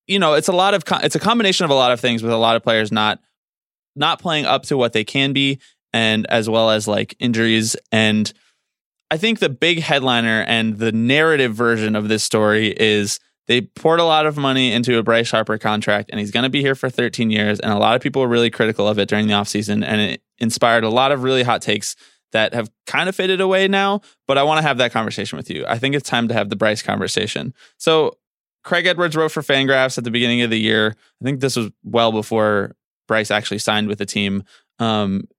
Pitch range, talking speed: 110-150 Hz, 235 wpm